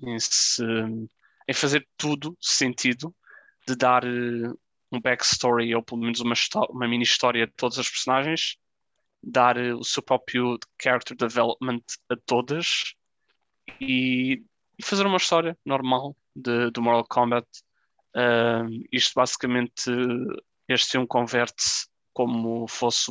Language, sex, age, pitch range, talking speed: Portuguese, male, 20-39, 115-130 Hz, 120 wpm